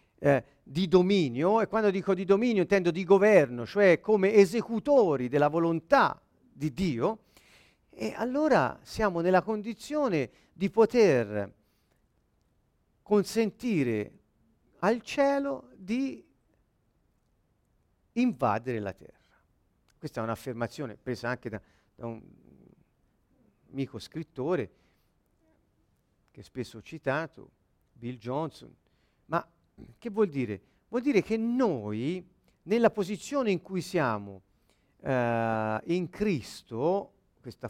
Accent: native